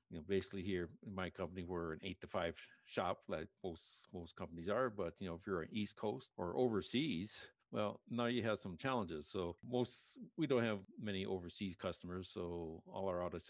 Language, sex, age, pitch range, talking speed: English, male, 60-79, 85-100 Hz, 205 wpm